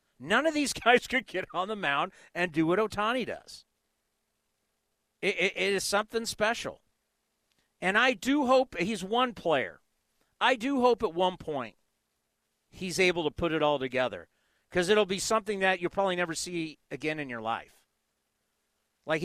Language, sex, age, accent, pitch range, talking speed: English, male, 50-69, American, 165-230 Hz, 170 wpm